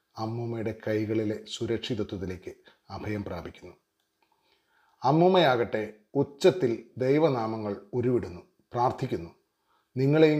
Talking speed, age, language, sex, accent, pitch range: 65 wpm, 30-49, Malayalam, male, native, 105-130 Hz